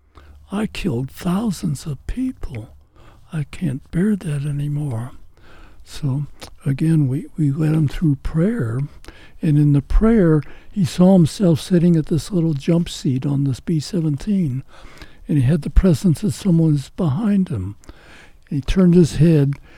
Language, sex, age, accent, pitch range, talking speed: English, male, 60-79, American, 130-170 Hz, 145 wpm